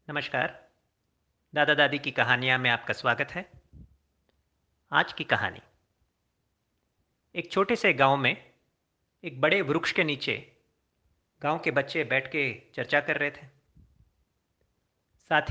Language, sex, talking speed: Hindi, male, 125 wpm